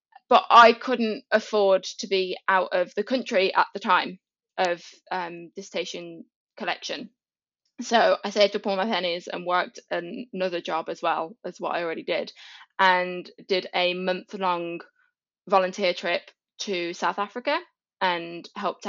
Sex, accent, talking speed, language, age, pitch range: female, British, 155 wpm, English, 20-39, 175-210 Hz